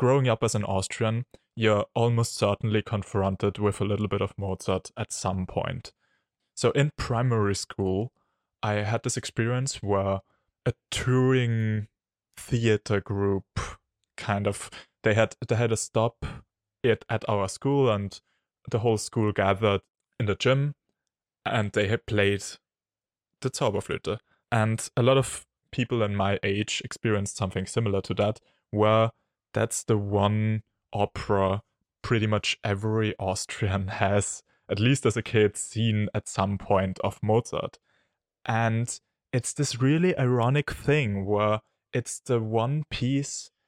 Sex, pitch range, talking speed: male, 100-120 Hz, 140 wpm